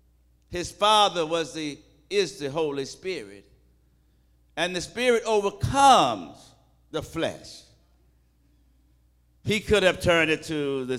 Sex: male